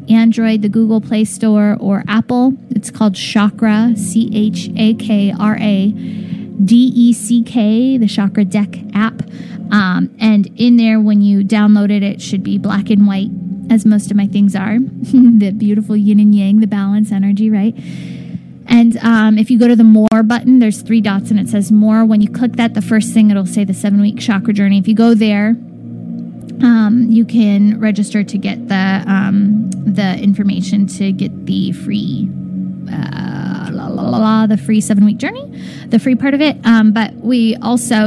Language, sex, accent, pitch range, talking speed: English, female, American, 205-225 Hz, 190 wpm